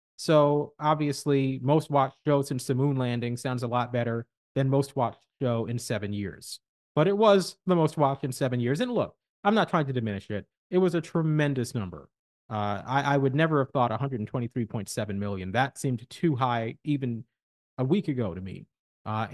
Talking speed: 185 wpm